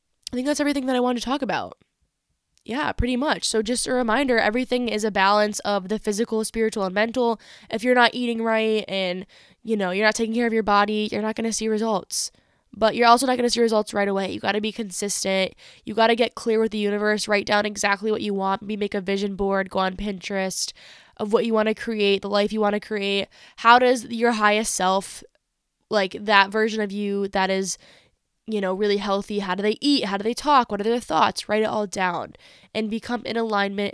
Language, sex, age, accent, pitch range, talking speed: English, female, 10-29, American, 195-225 Hz, 235 wpm